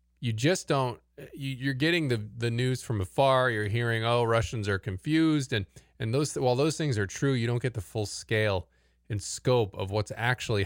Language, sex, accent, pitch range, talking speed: English, male, American, 95-125 Hz, 195 wpm